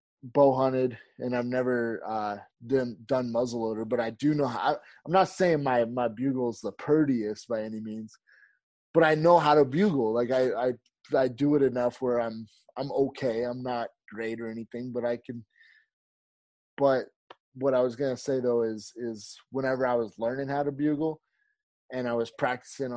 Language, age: English, 20-39